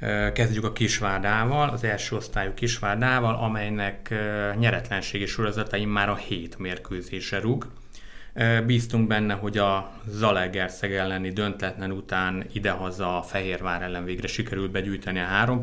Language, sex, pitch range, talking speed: Hungarian, male, 95-115 Hz, 125 wpm